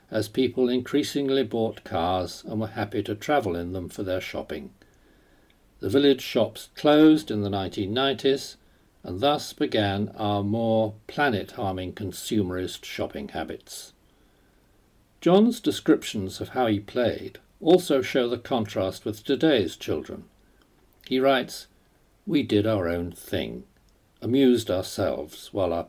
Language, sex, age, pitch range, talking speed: English, male, 50-69, 105-135 Hz, 125 wpm